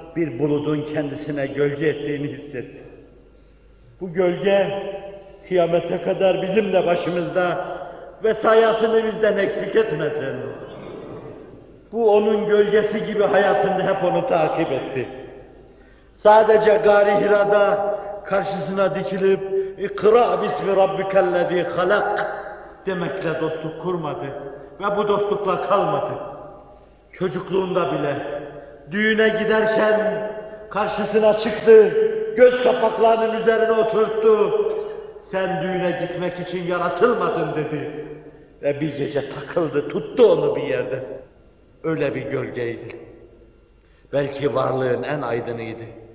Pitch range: 150-210 Hz